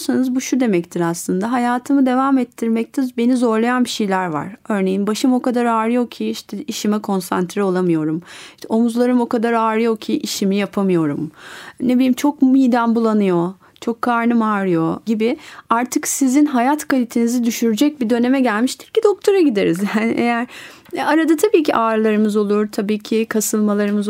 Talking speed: 150 wpm